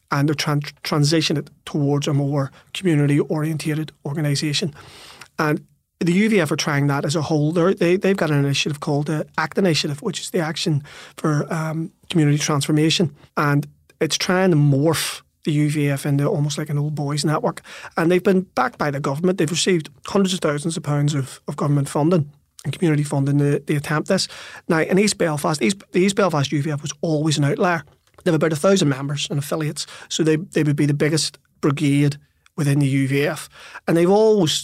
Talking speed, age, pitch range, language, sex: 185 wpm, 30-49, 145-170 Hz, English, male